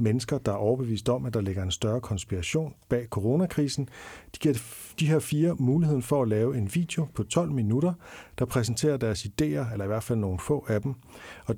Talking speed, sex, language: 205 wpm, male, Danish